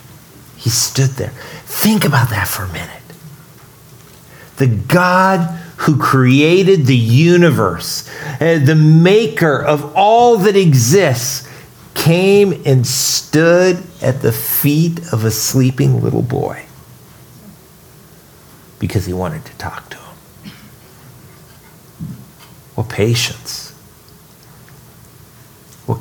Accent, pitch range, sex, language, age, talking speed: American, 105-145 Hz, male, English, 50-69, 105 wpm